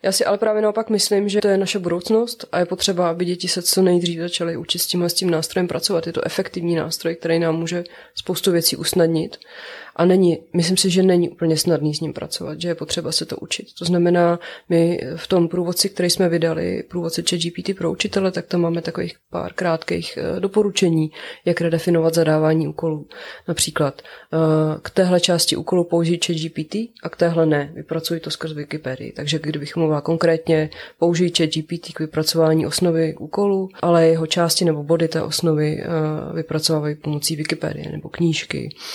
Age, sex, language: 20-39, female, Czech